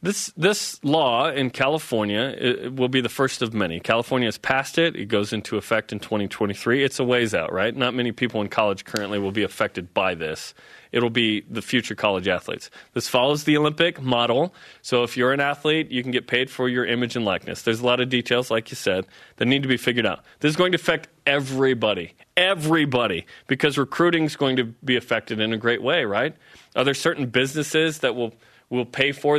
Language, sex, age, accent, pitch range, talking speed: English, male, 30-49, American, 120-155 Hz, 215 wpm